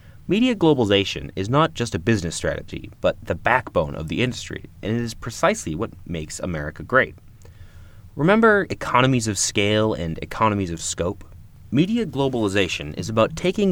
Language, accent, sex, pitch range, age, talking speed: English, American, male, 85-115 Hz, 30-49, 155 wpm